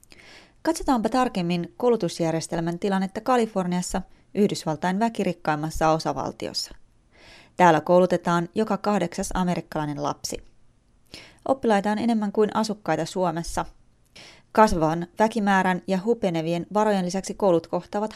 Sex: female